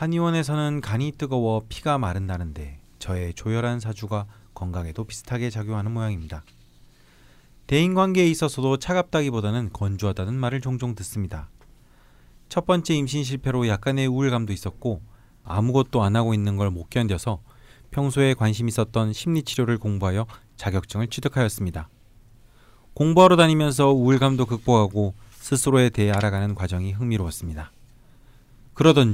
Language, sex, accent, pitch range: Korean, male, native, 105-135 Hz